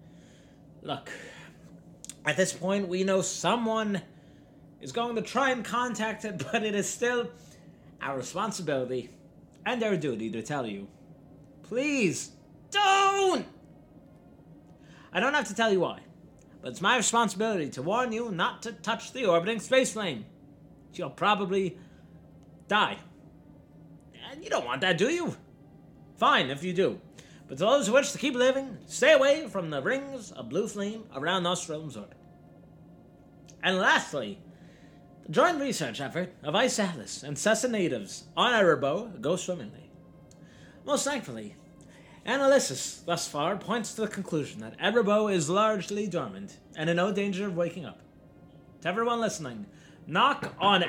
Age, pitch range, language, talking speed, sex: 30-49, 155-230 Hz, English, 145 wpm, male